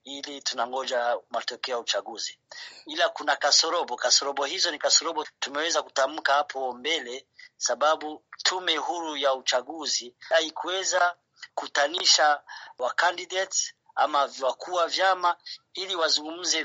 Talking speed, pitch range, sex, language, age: 110 wpm, 140-190 Hz, male, Swahili, 30-49